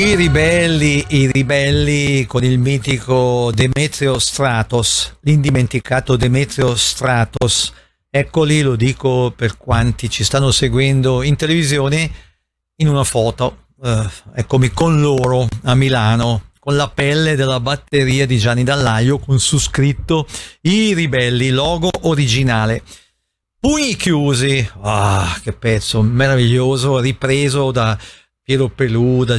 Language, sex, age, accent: Italian, male, 50-69, native